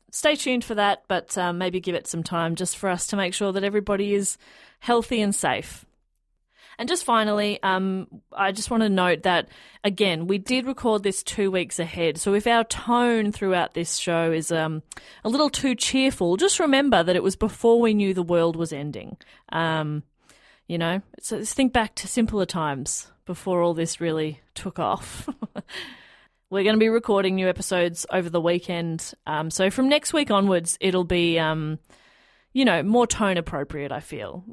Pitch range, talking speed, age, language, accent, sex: 165-220 Hz, 190 wpm, 30-49, English, Australian, female